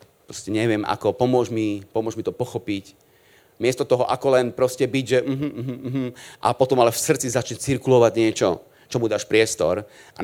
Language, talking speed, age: Slovak, 180 wpm, 30-49